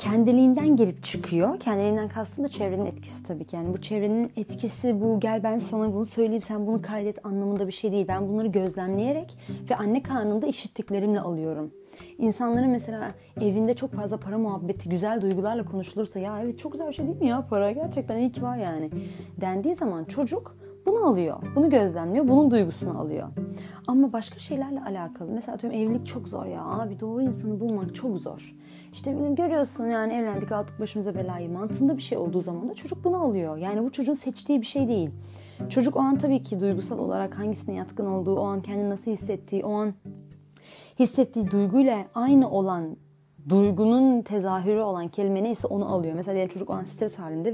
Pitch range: 195-240 Hz